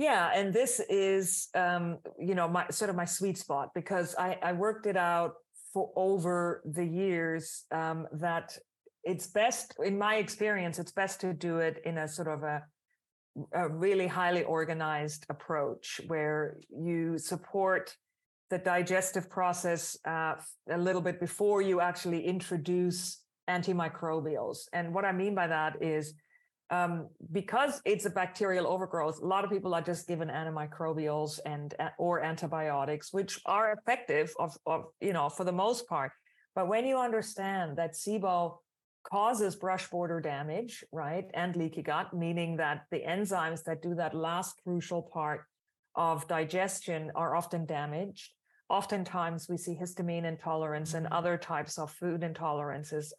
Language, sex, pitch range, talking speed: English, female, 160-190 Hz, 150 wpm